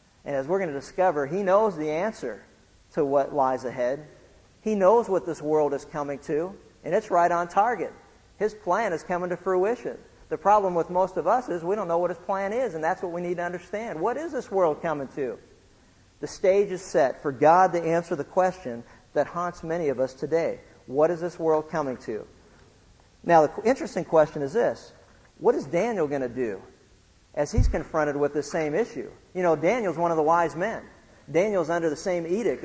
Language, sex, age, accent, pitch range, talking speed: English, male, 50-69, American, 145-180 Hz, 210 wpm